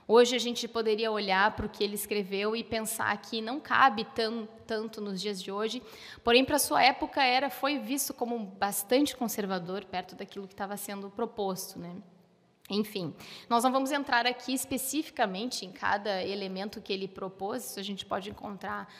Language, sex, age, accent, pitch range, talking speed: Portuguese, female, 20-39, Brazilian, 200-260 Hz, 180 wpm